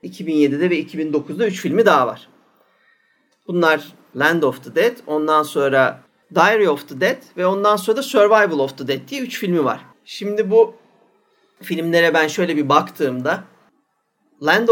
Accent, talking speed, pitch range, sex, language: native, 155 wpm, 155-220 Hz, male, Turkish